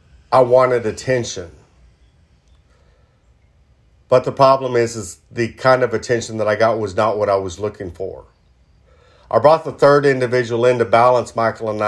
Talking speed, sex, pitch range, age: 160 wpm, male, 95-130 Hz, 50-69